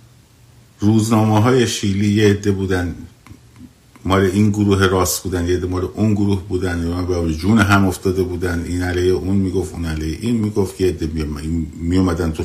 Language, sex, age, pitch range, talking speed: Persian, male, 50-69, 85-115 Hz, 150 wpm